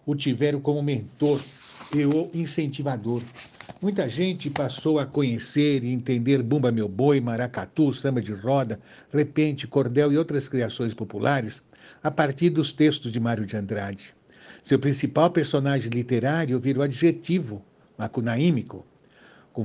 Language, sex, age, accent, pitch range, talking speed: Portuguese, male, 60-79, Brazilian, 120-150 Hz, 135 wpm